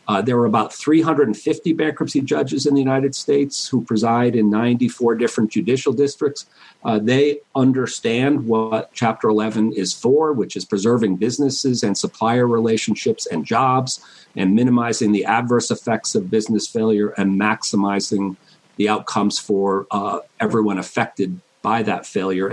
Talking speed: 145 wpm